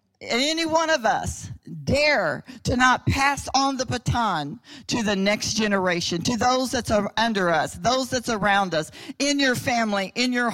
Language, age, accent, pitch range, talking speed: English, 50-69, American, 220-275 Hz, 165 wpm